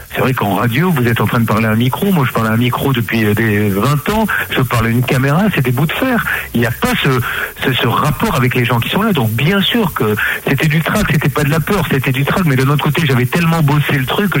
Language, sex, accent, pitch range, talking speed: French, male, French, 120-155 Hz, 305 wpm